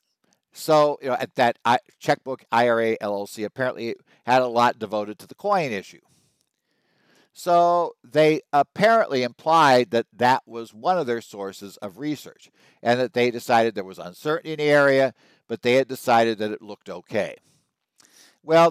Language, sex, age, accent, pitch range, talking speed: English, male, 60-79, American, 110-160 Hz, 155 wpm